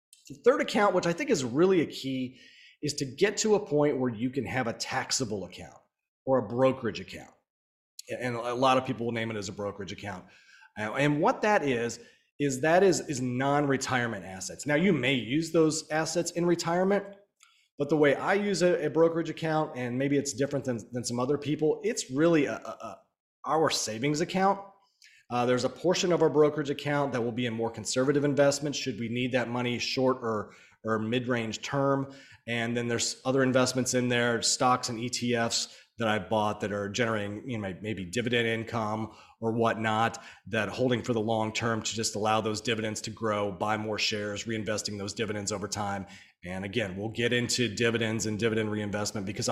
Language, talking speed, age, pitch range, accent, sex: English, 195 wpm, 30-49, 110-145 Hz, American, male